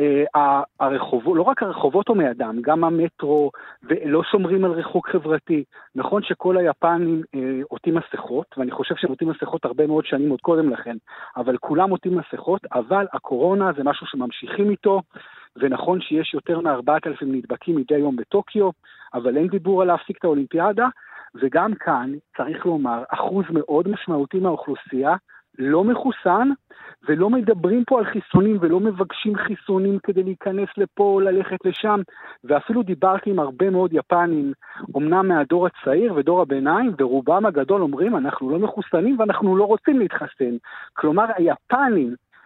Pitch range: 150-200 Hz